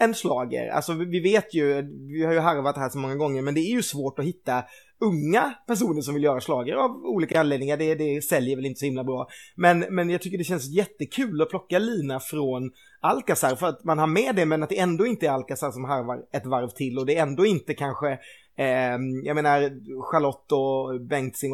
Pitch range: 135-170 Hz